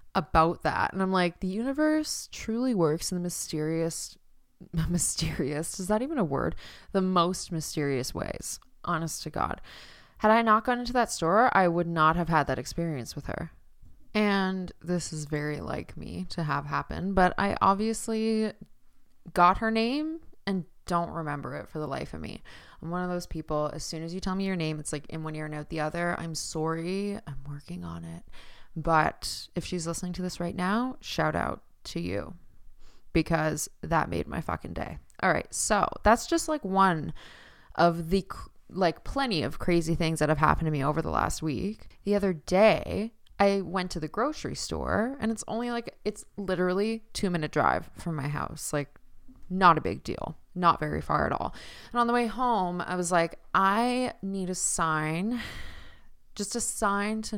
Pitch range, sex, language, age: 160-205 Hz, female, English, 20-39